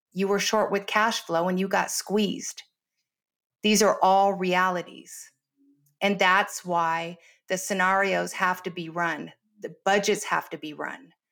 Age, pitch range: 50-69, 175-205 Hz